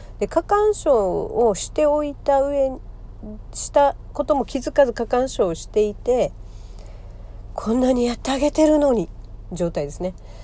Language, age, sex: Japanese, 40-59, female